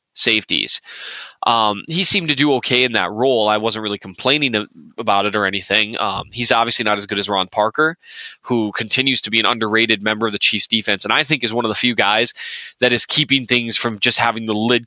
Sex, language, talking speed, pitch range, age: male, English, 225 wpm, 110-135 Hz, 20-39